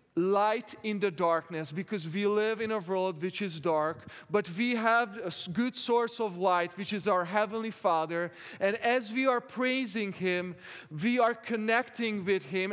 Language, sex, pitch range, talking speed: English, male, 170-220 Hz, 175 wpm